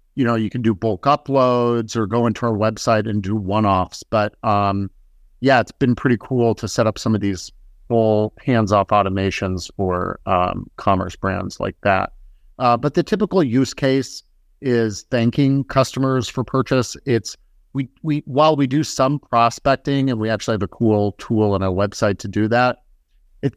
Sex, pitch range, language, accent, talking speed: male, 100-125 Hz, English, American, 180 wpm